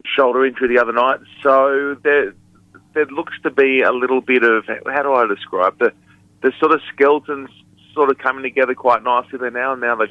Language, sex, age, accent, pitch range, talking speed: English, male, 30-49, Australian, 110-135 Hz, 210 wpm